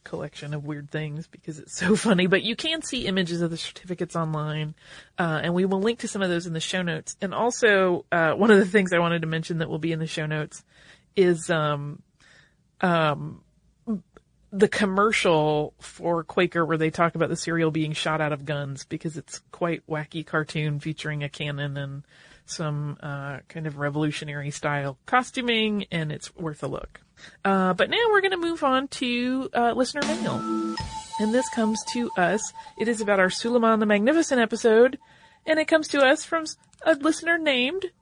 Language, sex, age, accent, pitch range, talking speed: English, female, 30-49, American, 160-240 Hz, 190 wpm